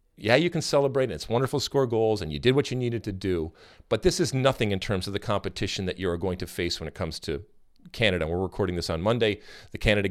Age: 40-59